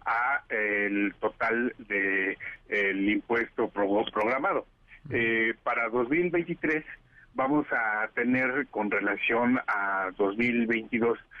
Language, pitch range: Spanish, 105-140 Hz